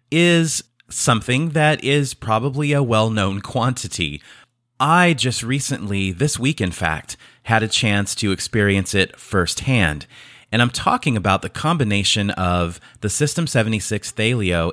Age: 30-49